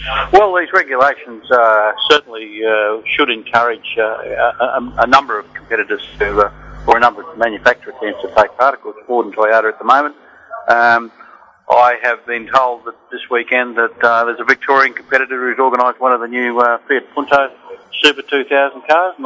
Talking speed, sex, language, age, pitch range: 185 wpm, male, English, 60-79, 115-135 Hz